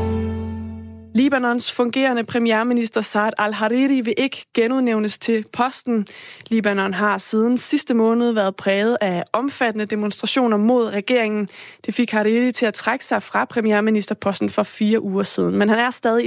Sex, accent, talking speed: female, native, 145 wpm